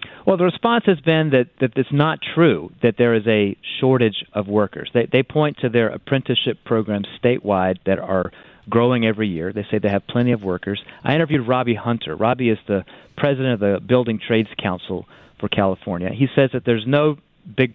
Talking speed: 195 wpm